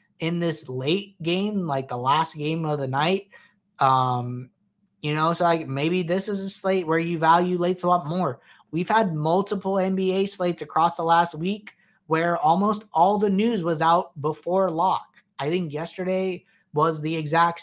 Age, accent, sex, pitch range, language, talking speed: 20-39, American, male, 150-180 Hz, English, 175 wpm